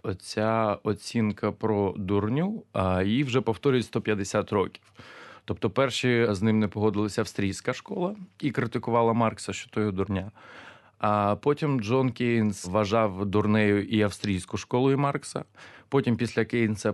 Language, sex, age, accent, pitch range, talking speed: Ukrainian, male, 20-39, native, 105-140 Hz, 130 wpm